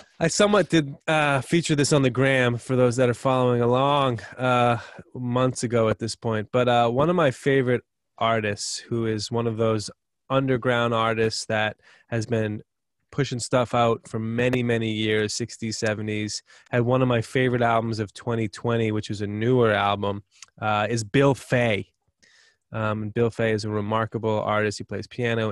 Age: 20-39